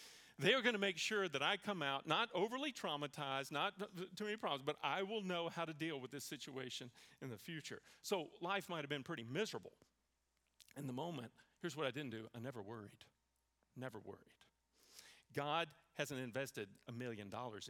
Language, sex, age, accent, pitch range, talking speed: English, male, 40-59, American, 105-165 Hz, 190 wpm